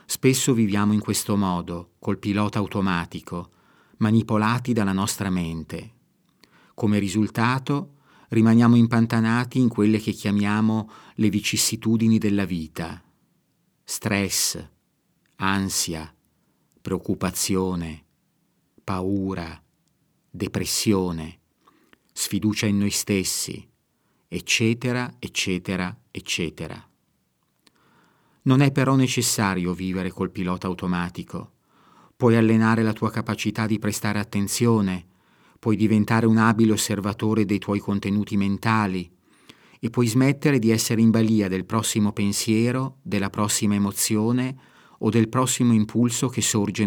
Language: Italian